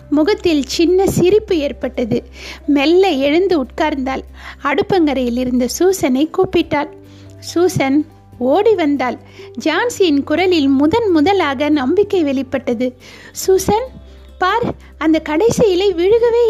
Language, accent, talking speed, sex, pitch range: Tamil, native, 95 wpm, female, 280-365 Hz